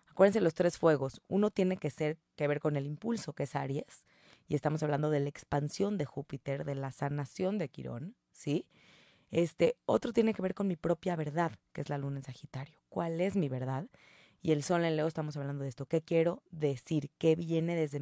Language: Spanish